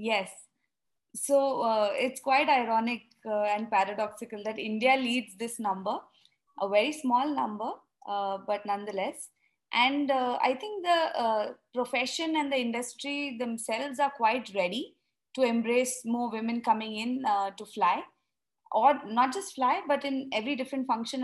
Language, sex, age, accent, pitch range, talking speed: English, female, 20-39, Indian, 215-260 Hz, 150 wpm